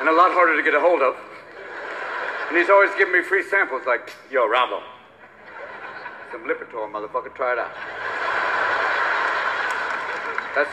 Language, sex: English, male